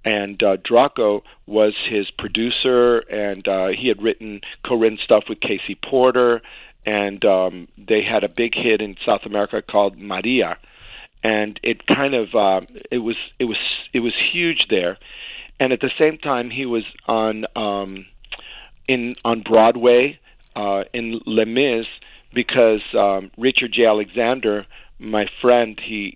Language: English